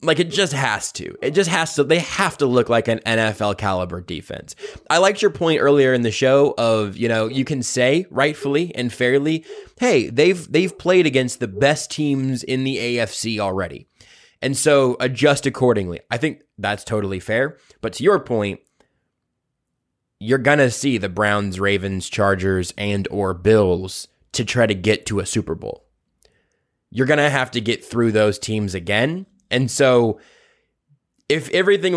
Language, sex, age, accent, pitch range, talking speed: English, male, 20-39, American, 105-145 Hz, 175 wpm